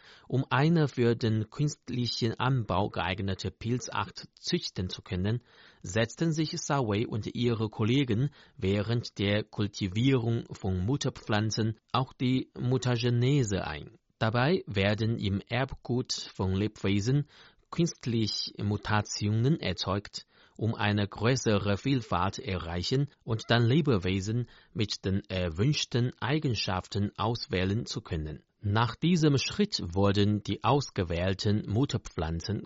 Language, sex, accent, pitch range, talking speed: German, male, German, 100-130 Hz, 105 wpm